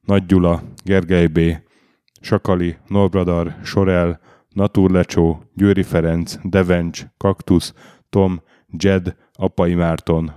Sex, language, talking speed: male, Hungarian, 100 wpm